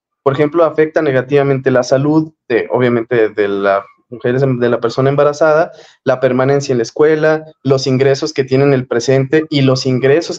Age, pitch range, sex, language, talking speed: 20-39, 130-155 Hz, male, Spanish, 175 wpm